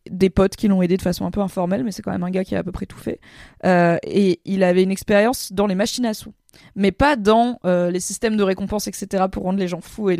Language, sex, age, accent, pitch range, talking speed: French, female, 20-39, French, 185-230 Hz, 290 wpm